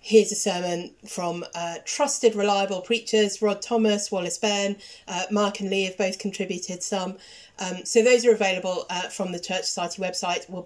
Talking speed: 175 wpm